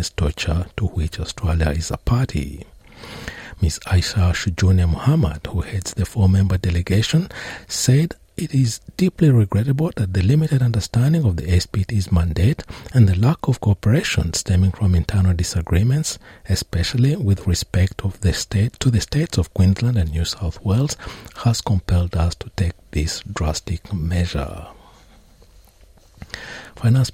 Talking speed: 135 wpm